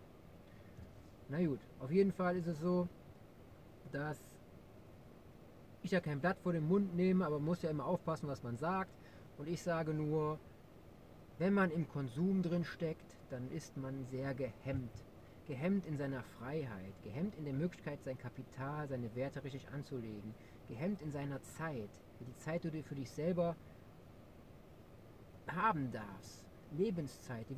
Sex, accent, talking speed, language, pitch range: male, German, 150 wpm, German, 125-180 Hz